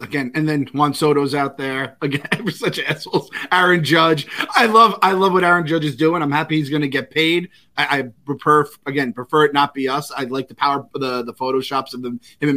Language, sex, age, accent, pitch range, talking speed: English, male, 30-49, American, 130-160 Hz, 240 wpm